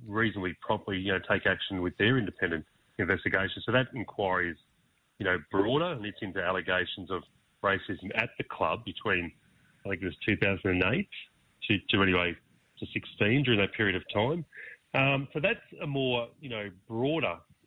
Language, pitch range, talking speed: English, 90-120 Hz, 170 wpm